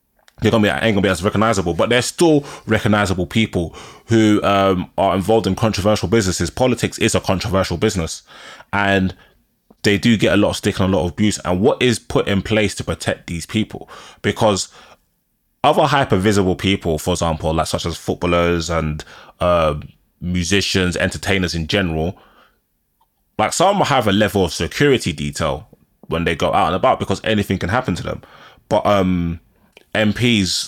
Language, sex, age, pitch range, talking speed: English, male, 20-39, 85-105 Hz, 170 wpm